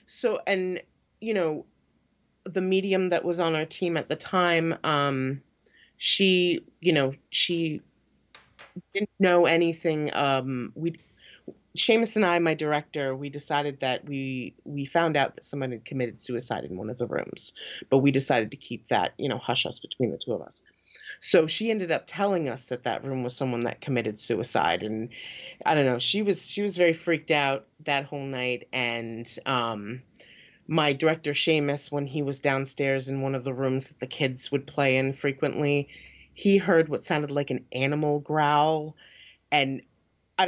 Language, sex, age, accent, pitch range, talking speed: English, female, 30-49, American, 135-165 Hz, 180 wpm